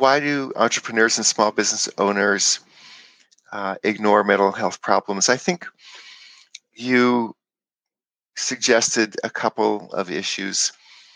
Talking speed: 110 wpm